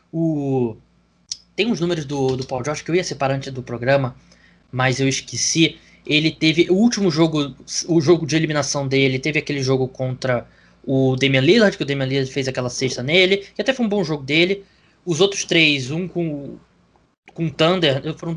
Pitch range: 150-190 Hz